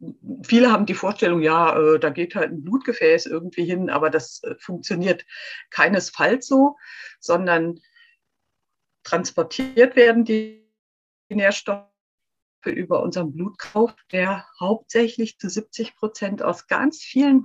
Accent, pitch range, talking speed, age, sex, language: German, 170-235 Hz, 115 wpm, 50-69, female, German